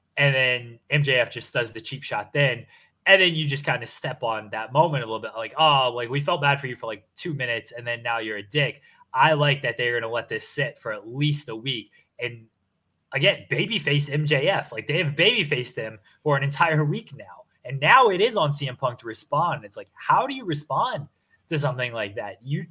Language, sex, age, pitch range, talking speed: English, male, 20-39, 125-155 Hz, 230 wpm